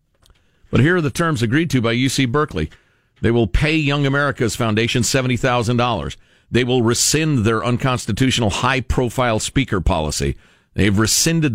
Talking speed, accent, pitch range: 140 wpm, American, 105-145 Hz